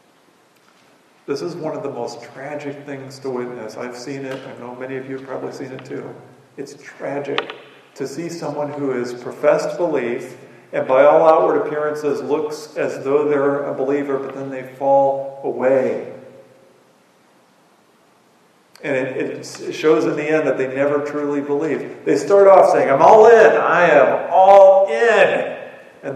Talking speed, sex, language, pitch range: 165 wpm, male, English, 135-175 Hz